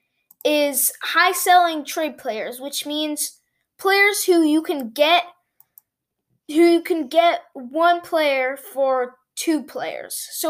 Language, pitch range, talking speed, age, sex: English, 285-350 Hz, 120 wpm, 20-39, female